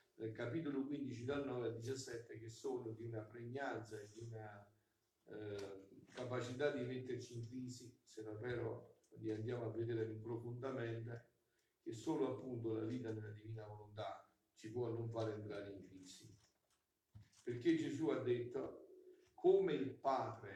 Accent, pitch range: native, 105-135 Hz